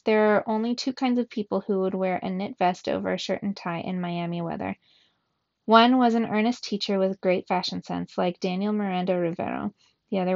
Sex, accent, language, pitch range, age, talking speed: female, American, English, 185-215 Hz, 20-39, 210 wpm